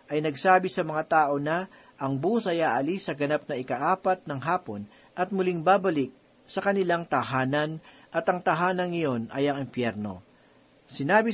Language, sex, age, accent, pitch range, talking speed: Filipino, male, 40-59, native, 140-185 Hz, 160 wpm